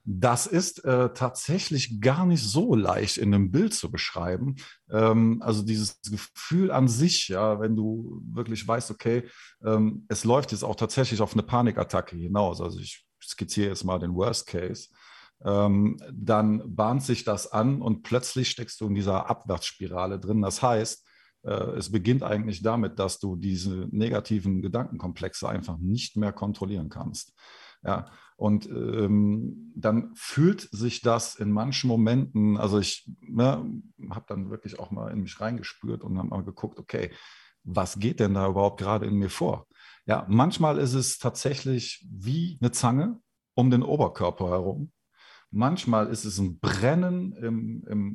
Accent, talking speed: German, 155 wpm